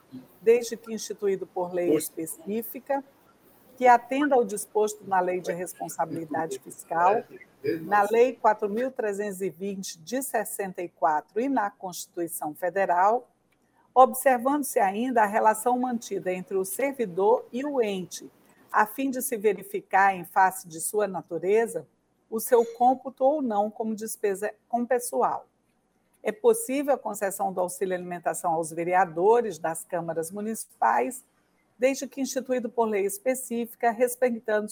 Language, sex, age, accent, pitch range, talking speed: Portuguese, female, 60-79, Brazilian, 185-245 Hz, 125 wpm